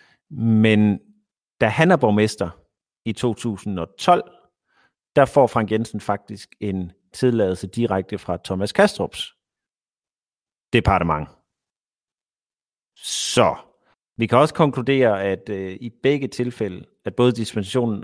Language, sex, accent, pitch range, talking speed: Danish, male, native, 100-120 Hz, 105 wpm